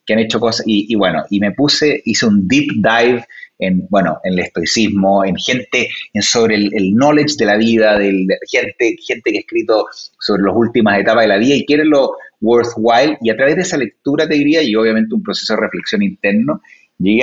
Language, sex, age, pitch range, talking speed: Spanish, male, 30-49, 110-185 Hz, 220 wpm